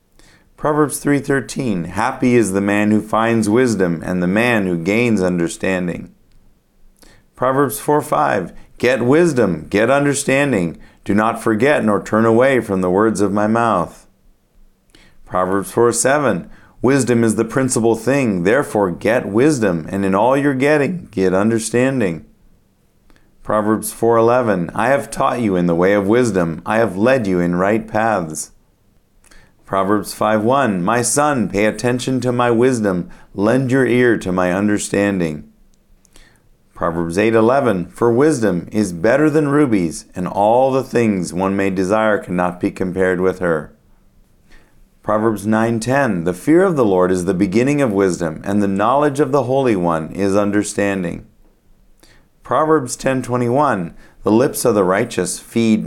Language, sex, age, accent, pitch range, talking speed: English, male, 40-59, American, 95-125 Hz, 140 wpm